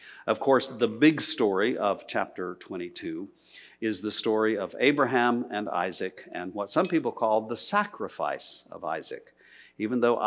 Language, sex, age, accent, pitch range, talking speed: English, male, 50-69, American, 100-130 Hz, 150 wpm